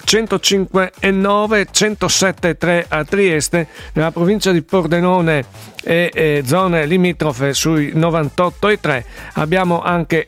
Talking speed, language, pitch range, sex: 110 wpm, Italian, 145-180 Hz, male